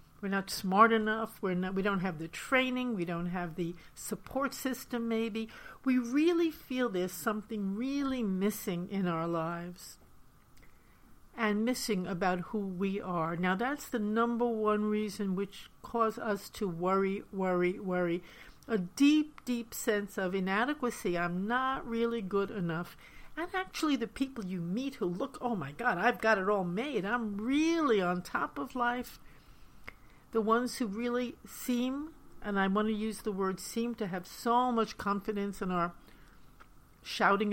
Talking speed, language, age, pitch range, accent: 160 wpm, English, 60-79, 190-235 Hz, American